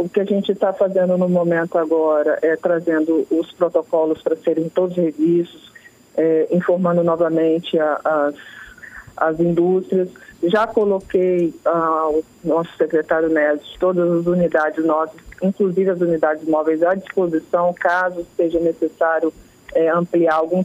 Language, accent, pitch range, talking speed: Portuguese, Brazilian, 165-195 Hz, 120 wpm